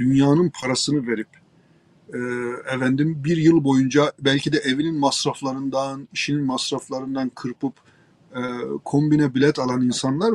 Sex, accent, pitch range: male, native, 140-200 Hz